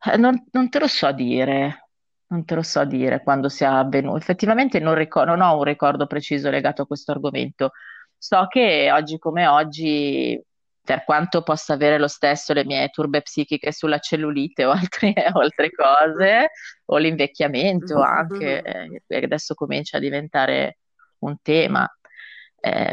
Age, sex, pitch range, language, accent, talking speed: 30-49, female, 135-155 Hz, Italian, native, 150 wpm